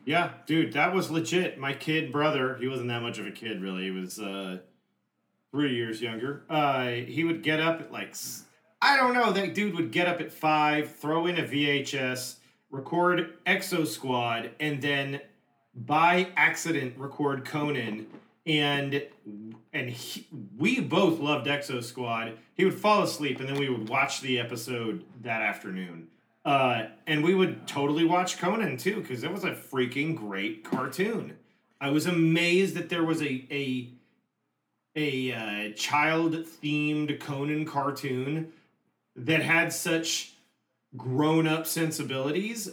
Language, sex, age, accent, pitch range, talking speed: English, male, 40-59, American, 130-165 Hz, 145 wpm